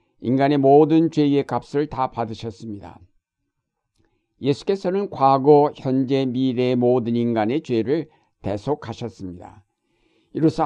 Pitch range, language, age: 115-145 Hz, Korean, 60-79